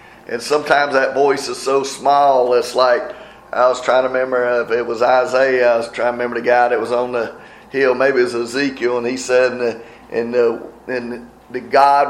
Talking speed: 205 wpm